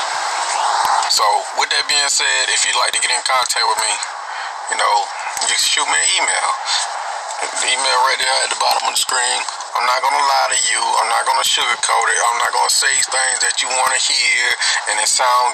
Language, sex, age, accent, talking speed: English, male, 30-49, American, 225 wpm